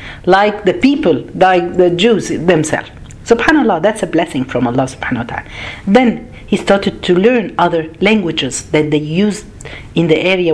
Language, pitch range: Arabic, 155-230 Hz